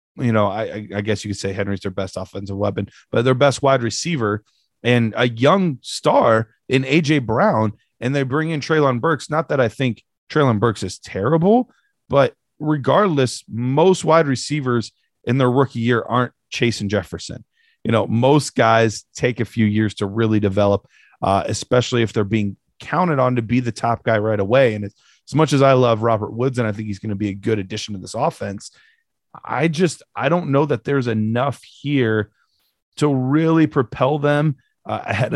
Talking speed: 190 wpm